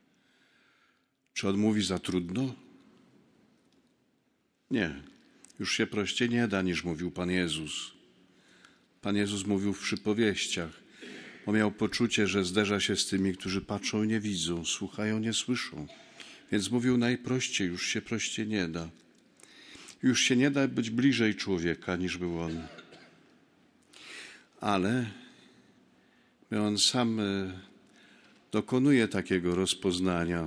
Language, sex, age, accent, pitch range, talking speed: Polish, male, 50-69, native, 90-105 Hz, 120 wpm